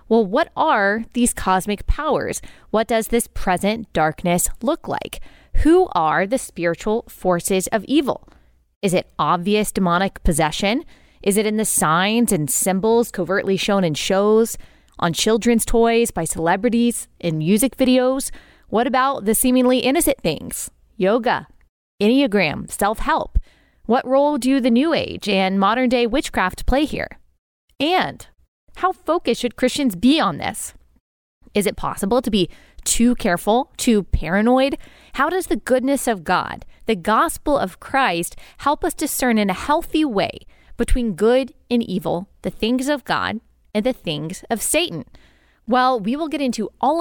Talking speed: 150 wpm